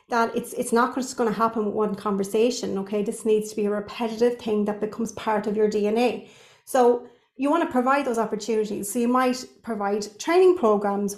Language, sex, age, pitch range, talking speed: English, female, 30-49, 215-255 Hz, 205 wpm